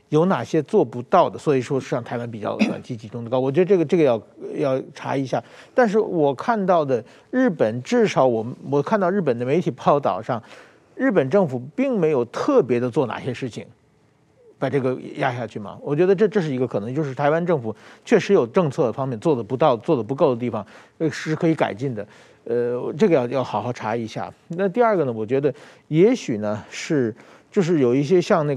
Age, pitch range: 50-69, 125-175 Hz